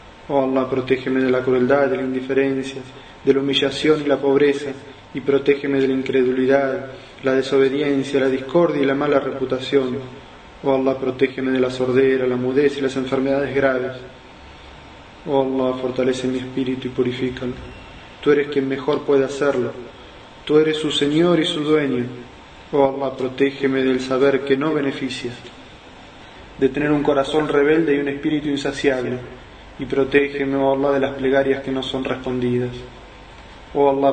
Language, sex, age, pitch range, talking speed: Spanish, male, 20-39, 130-140 Hz, 160 wpm